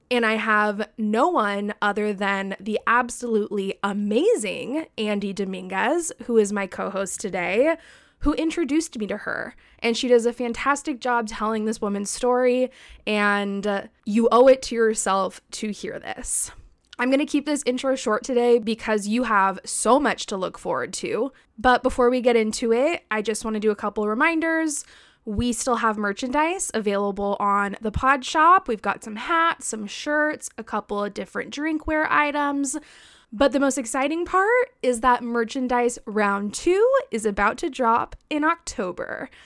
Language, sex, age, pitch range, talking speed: English, female, 20-39, 210-275 Hz, 165 wpm